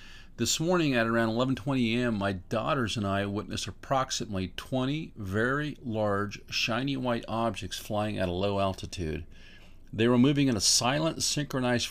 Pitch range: 95-125 Hz